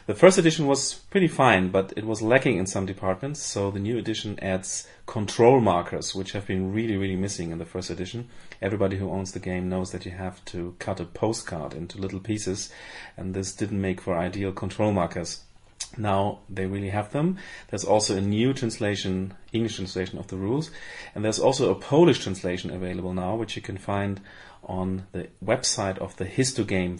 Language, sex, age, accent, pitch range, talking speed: English, male, 30-49, German, 95-115 Hz, 195 wpm